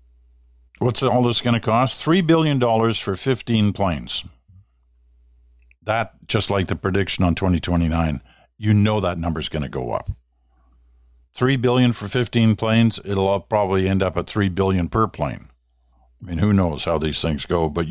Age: 50-69